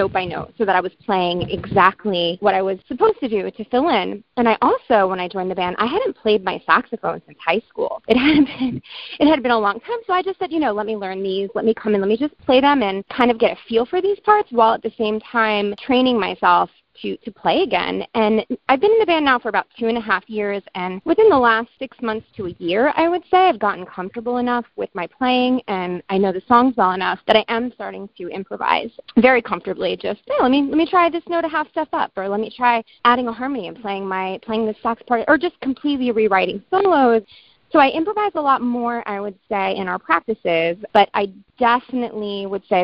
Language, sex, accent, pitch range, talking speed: English, female, American, 190-255 Hz, 250 wpm